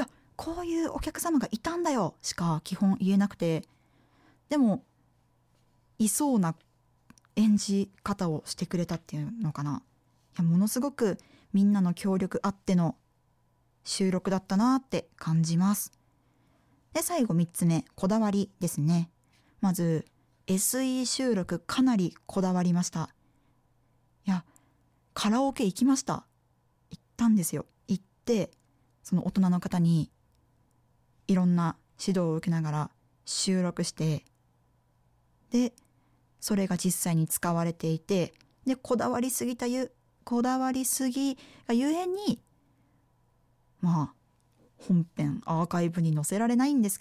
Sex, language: female, Japanese